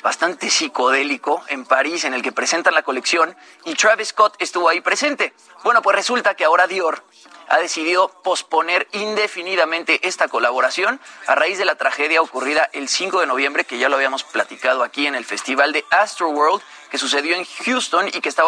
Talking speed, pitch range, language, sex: 180 wpm, 145-195 Hz, Spanish, male